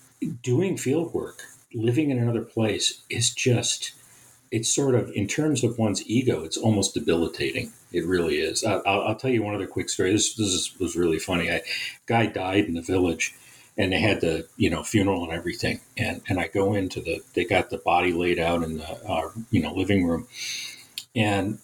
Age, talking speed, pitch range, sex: 50-69, 200 wpm, 100-125 Hz, male